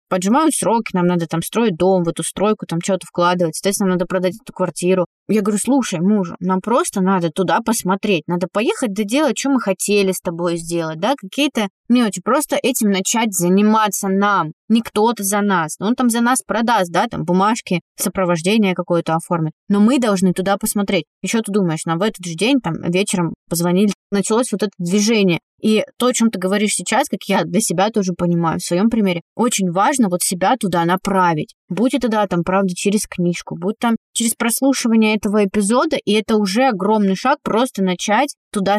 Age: 20-39